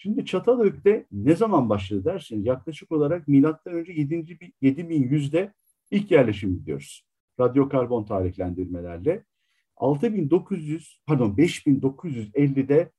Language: Turkish